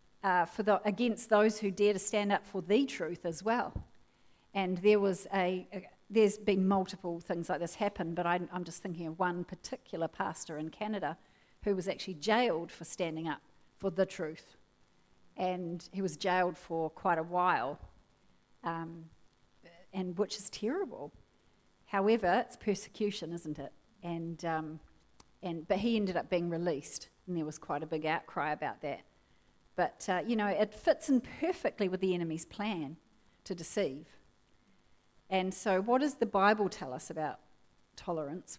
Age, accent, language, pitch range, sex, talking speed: 40-59, Australian, English, 170-210 Hz, female, 170 wpm